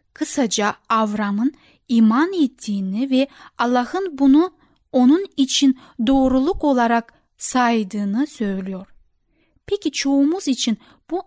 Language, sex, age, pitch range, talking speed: Turkish, female, 10-29, 225-295 Hz, 90 wpm